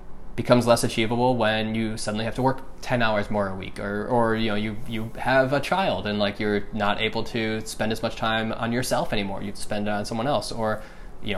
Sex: male